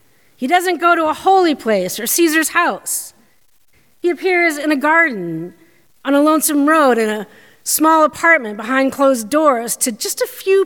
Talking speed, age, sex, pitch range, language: 170 wpm, 40-59, female, 240-335 Hz, English